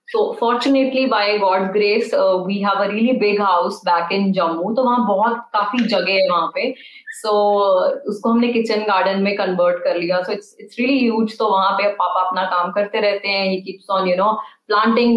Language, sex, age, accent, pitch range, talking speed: Hindi, female, 20-39, native, 190-235 Hz, 150 wpm